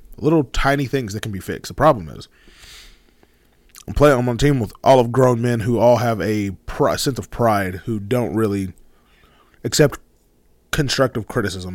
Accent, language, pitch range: American, English, 95-140 Hz